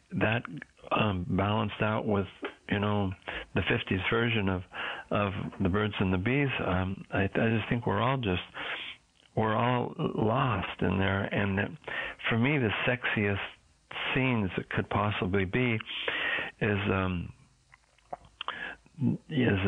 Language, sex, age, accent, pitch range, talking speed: English, male, 60-79, American, 95-115 Hz, 135 wpm